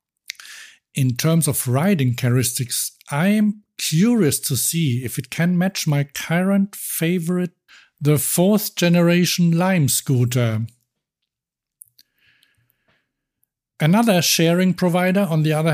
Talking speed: 105 wpm